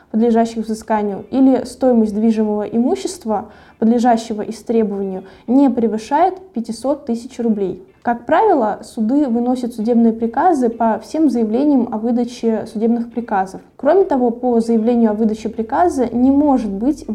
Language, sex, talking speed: Russian, female, 125 wpm